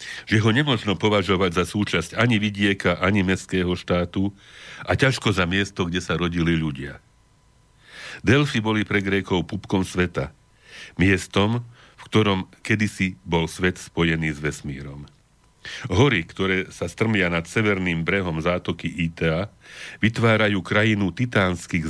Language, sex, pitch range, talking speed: Slovak, male, 85-105 Hz, 125 wpm